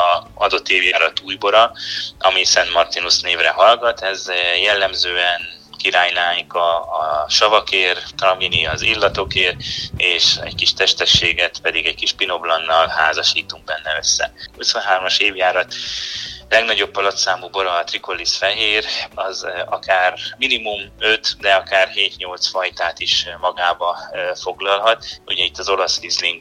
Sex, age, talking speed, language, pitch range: male, 20-39, 125 wpm, Hungarian, 85-105 Hz